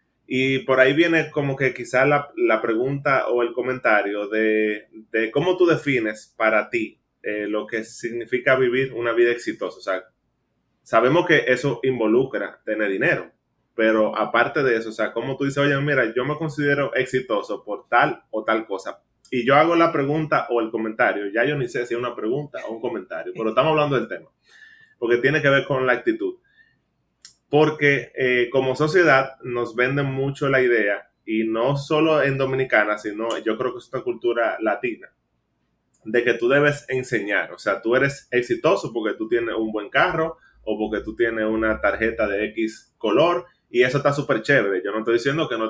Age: 20-39